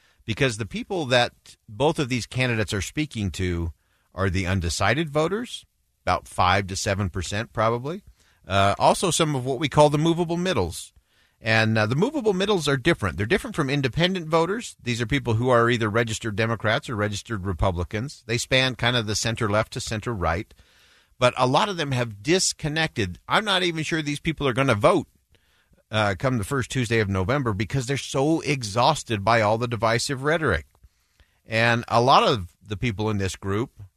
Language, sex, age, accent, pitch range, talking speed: English, male, 50-69, American, 100-150 Hz, 185 wpm